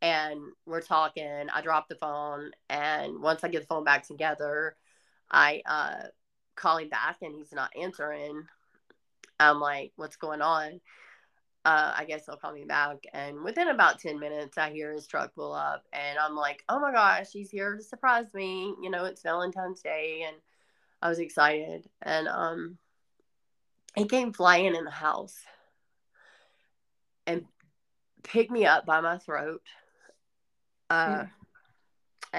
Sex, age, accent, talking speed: female, 30-49, American, 155 wpm